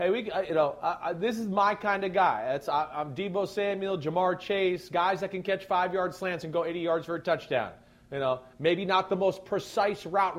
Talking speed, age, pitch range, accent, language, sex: 225 wpm, 40-59, 170-205 Hz, American, English, male